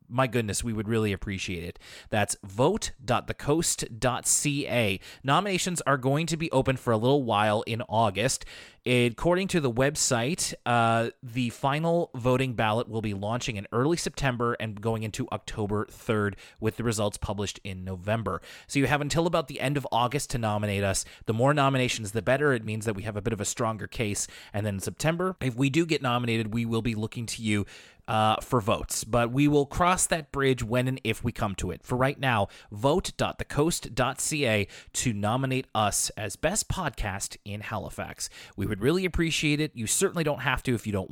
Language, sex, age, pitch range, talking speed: English, male, 30-49, 110-140 Hz, 190 wpm